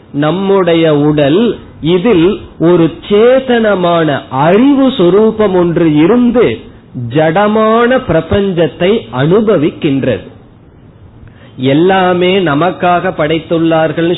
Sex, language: male, Tamil